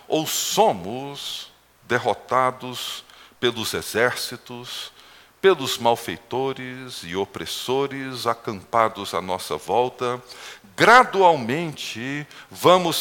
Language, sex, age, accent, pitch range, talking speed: Portuguese, male, 60-79, Brazilian, 100-145 Hz, 70 wpm